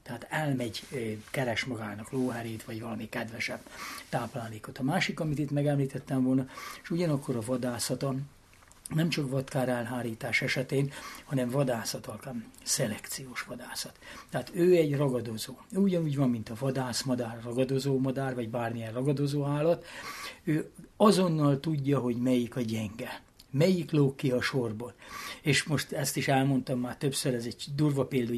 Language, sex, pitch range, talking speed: Hungarian, male, 120-140 Hz, 135 wpm